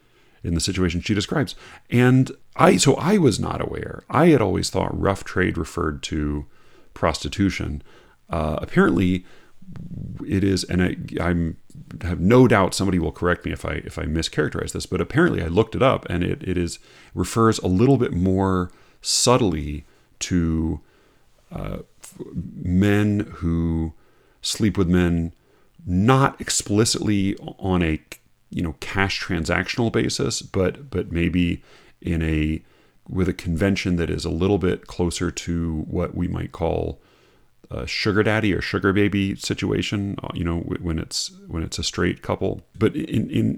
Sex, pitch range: male, 85-100 Hz